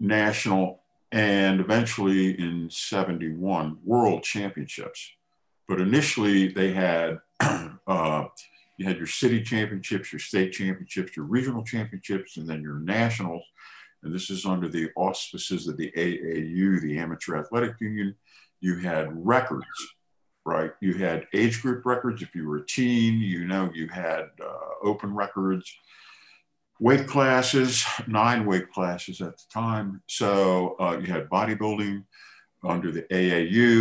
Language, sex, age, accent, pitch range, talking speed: English, male, 50-69, American, 85-110 Hz, 135 wpm